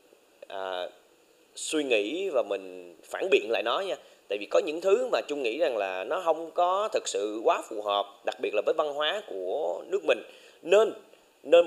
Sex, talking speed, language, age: male, 195 wpm, Vietnamese, 20-39